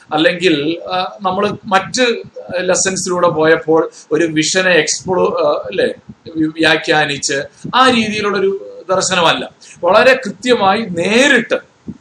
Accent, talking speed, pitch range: native, 80 wpm, 145-200 Hz